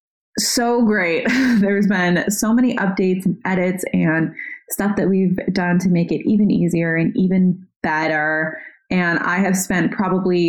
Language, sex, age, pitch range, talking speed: English, female, 20-39, 180-220 Hz, 155 wpm